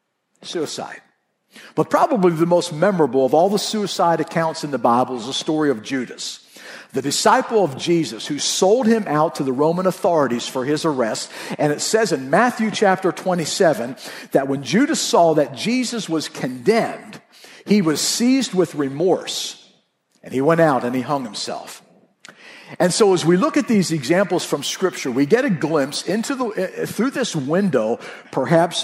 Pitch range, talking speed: 150-215 Hz, 170 wpm